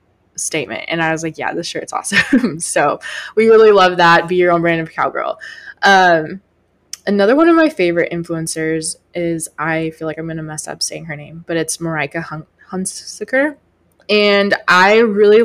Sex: female